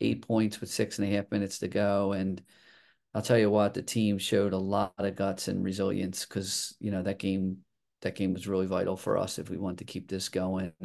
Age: 40-59